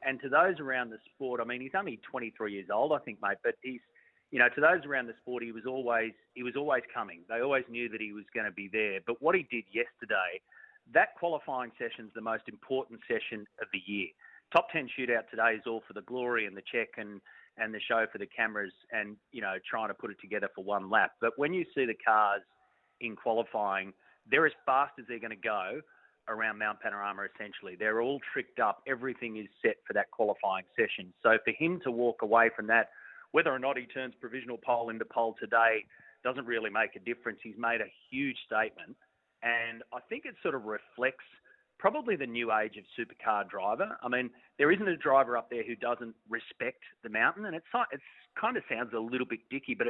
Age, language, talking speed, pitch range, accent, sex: 30-49, English, 220 wpm, 110-130 Hz, Australian, male